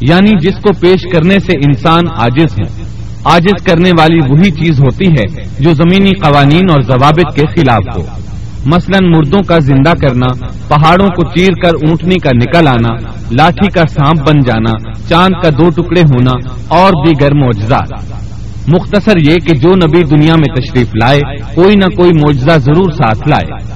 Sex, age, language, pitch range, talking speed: male, 40-59, Urdu, 125-170 Hz, 165 wpm